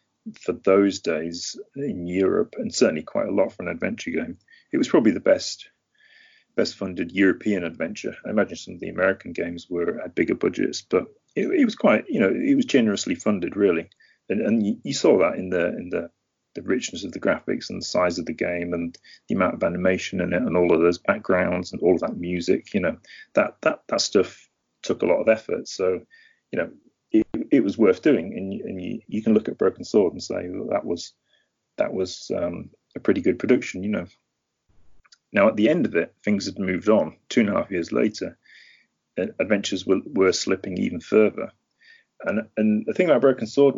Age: 30-49